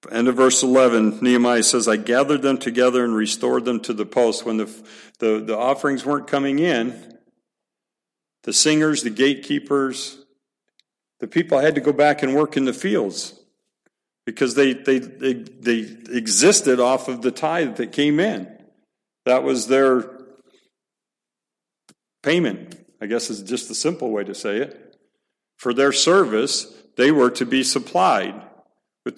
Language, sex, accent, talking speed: English, male, American, 155 wpm